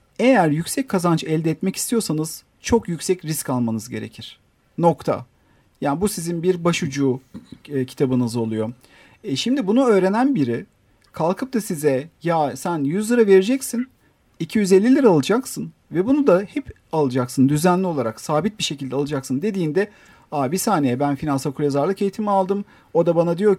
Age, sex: 50-69, male